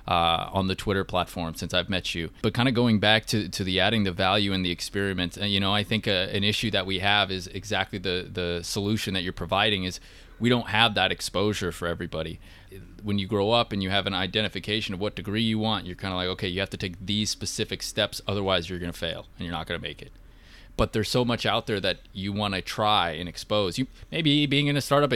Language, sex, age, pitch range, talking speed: English, male, 20-39, 90-110 Hz, 255 wpm